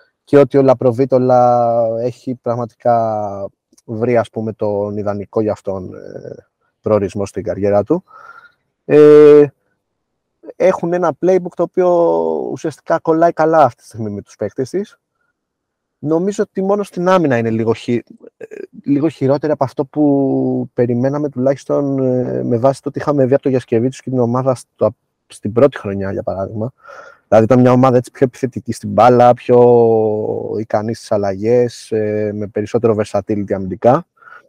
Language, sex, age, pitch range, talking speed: Greek, male, 20-39, 110-150 Hz, 135 wpm